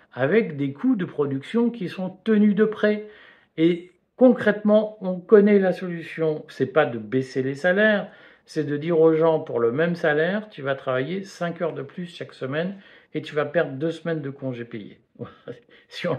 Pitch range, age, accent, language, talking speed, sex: 125-180 Hz, 50-69, French, French, 195 wpm, male